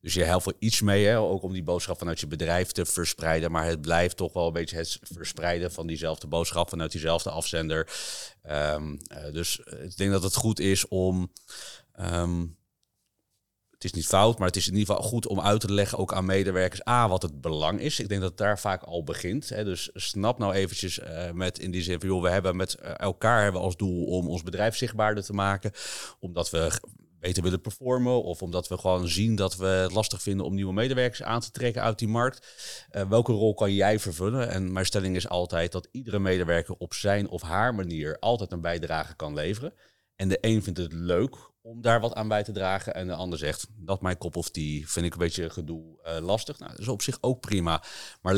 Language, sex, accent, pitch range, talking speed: Dutch, male, Dutch, 85-105 Hz, 225 wpm